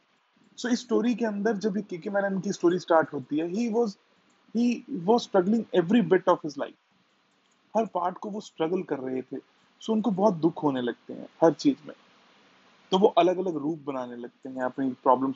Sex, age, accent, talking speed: male, 30-49, native, 50 wpm